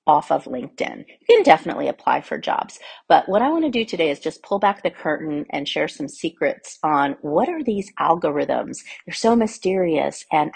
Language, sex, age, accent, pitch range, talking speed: English, female, 40-59, American, 155-210 Hz, 195 wpm